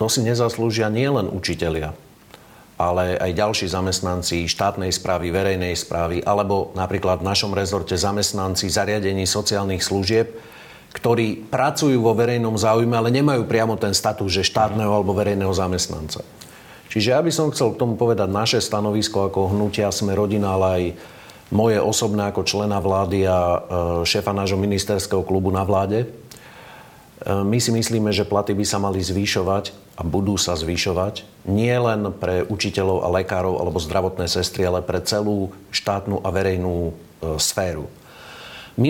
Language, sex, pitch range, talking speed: Slovak, male, 95-110 Hz, 150 wpm